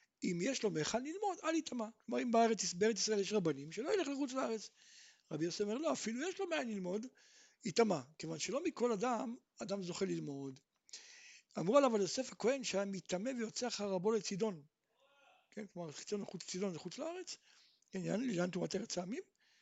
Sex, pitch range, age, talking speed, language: male, 180-260 Hz, 60-79, 165 wpm, Hebrew